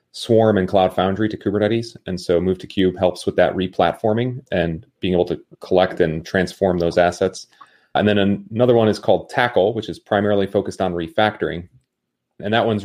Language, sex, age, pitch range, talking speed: English, male, 30-49, 90-105 Hz, 190 wpm